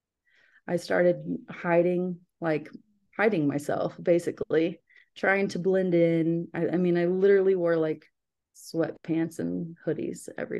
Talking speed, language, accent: 125 wpm, English, American